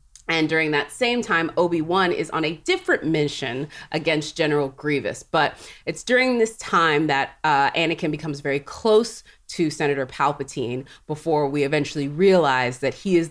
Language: English